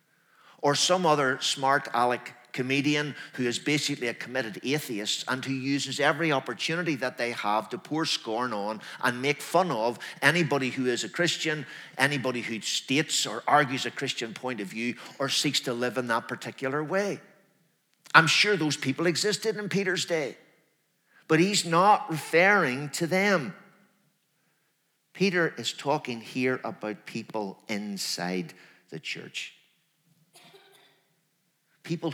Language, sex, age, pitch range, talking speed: English, male, 50-69, 130-180 Hz, 140 wpm